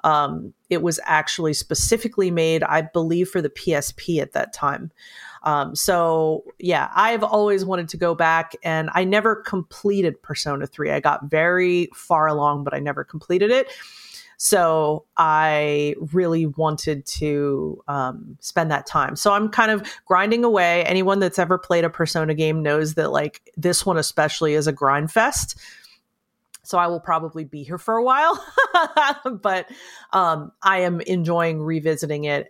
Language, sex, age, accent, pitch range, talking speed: English, female, 30-49, American, 150-185 Hz, 160 wpm